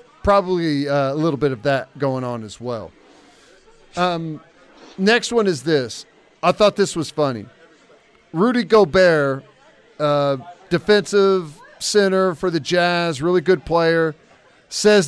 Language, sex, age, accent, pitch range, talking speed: English, male, 40-59, American, 150-195 Hz, 130 wpm